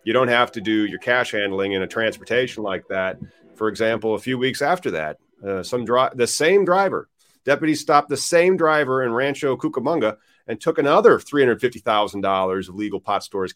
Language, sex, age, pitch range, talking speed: English, male, 40-59, 100-145 Hz, 185 wpm